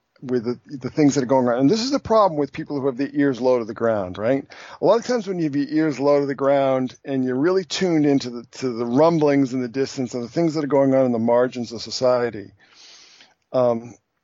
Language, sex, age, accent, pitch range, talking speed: English, male, 50-69, American, 115-145 Hz, 260 wpm